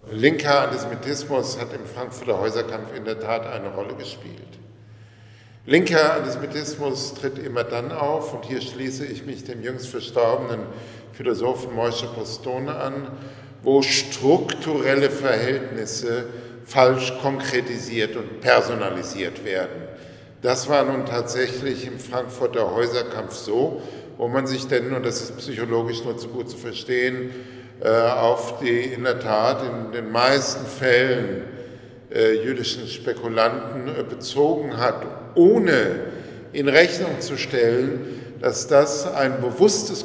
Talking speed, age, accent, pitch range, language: 120 wpm, 50-69, German, 115-135 Hz, German